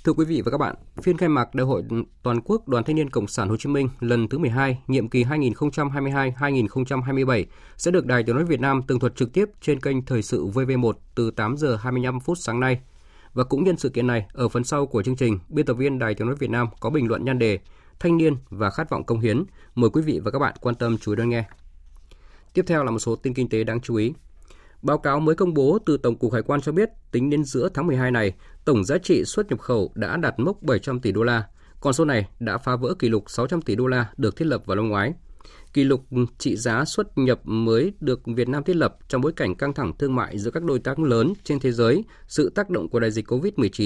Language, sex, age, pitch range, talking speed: Vietnamese, male, 20-39, 115-140 Hz, 255 wpm